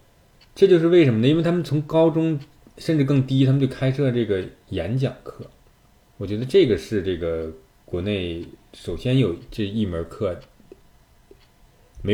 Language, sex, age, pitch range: Chinese, male, 20-39, 95-130 Hz